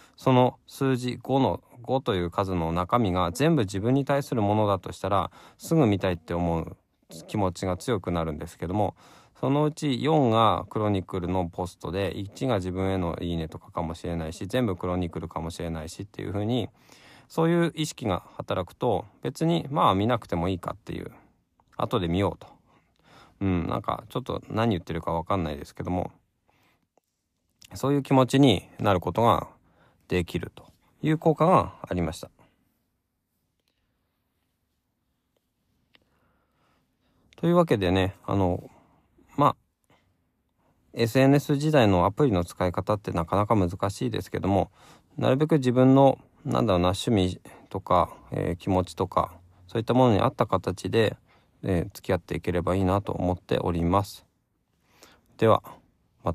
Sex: male